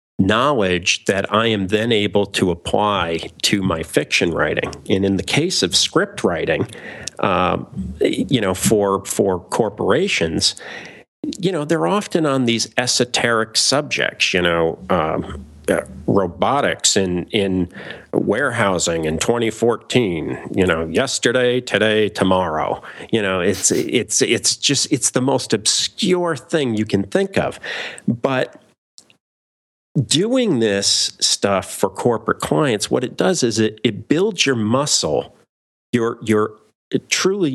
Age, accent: 50-69, American